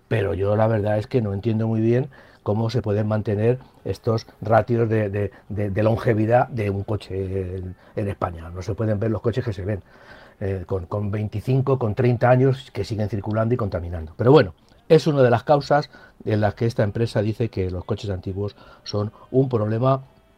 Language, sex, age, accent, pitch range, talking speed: Spanish, male, 60-79, Spanish, 105-130 Hz, 200 wpm